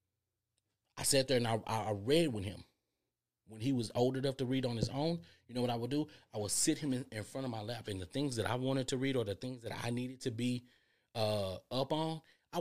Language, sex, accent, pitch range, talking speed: English, male, American, 110-130 Hz, 260 wpm